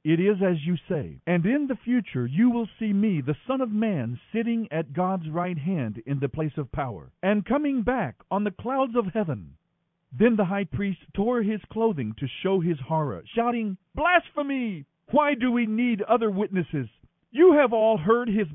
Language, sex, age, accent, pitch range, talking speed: English, male, 50-69, American, 150-225 Hz, 190 wpm